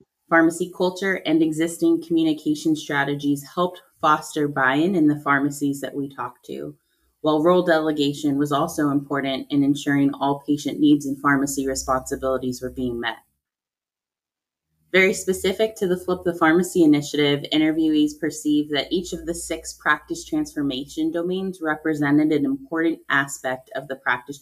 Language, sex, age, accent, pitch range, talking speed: English, female, 20-39, American, 140-175 Hz, 145 wpm